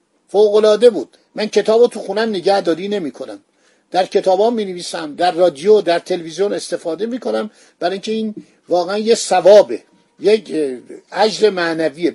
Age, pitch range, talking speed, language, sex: 50-69, 180-235 Hz, 150 wpm, Persian, male